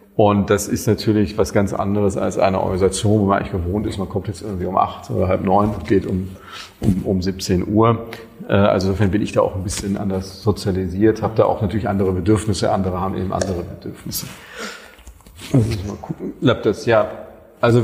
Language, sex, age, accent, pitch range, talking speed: German, male, 40-59, German, 100-110 Hz, 195 wpm